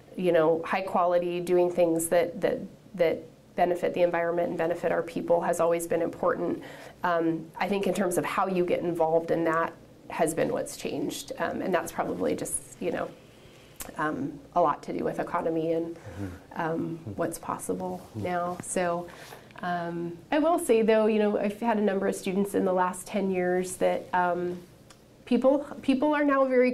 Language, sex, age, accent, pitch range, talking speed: English, female, 30-49, American, 175-200 Hz, 180 wpm